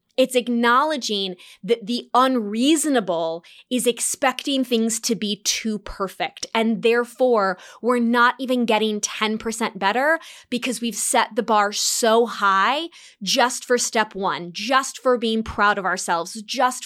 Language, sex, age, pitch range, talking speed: English, female, 20-39, 215-260 Hz, 135 wpm